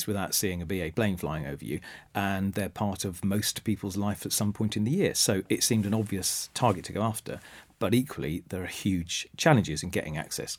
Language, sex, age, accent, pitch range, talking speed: English, male, 40-59, British, 95-110 Hz, 220 wpm